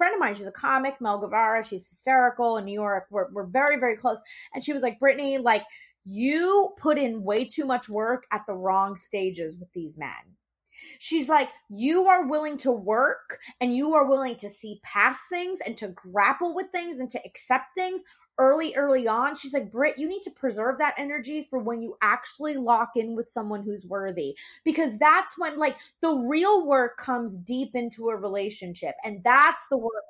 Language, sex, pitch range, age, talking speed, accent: English, female, 215-300 Hz, 20-39, 200 wpm, American